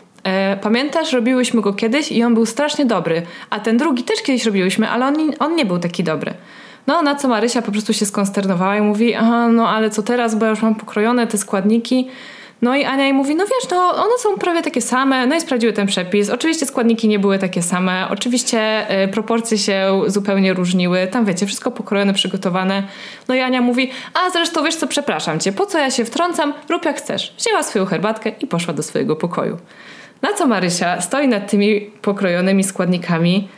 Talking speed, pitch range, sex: 200 wpm, 195-255 Hz, female